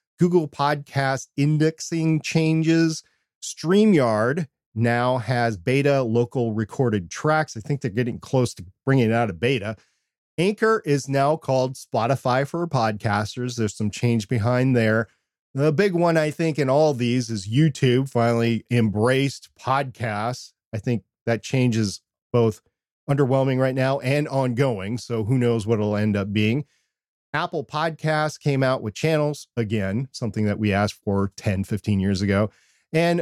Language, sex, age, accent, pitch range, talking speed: English, male, 40-59, American, 110-140 Hz, 150 wpm